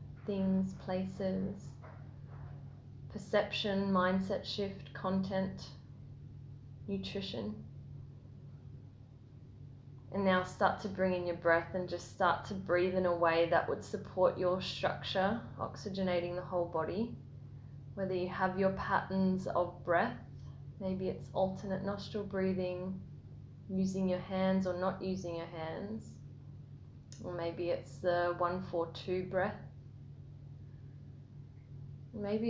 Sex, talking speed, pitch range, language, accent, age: female, 115 wpm, 135-190 Hz, English, Australian, 10-29